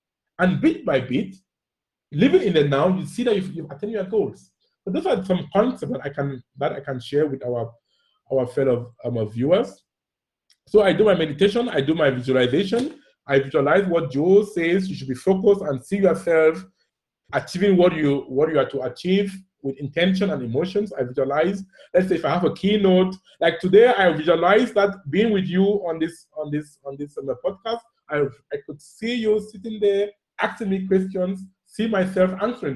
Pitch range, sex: 155-205 Hz, male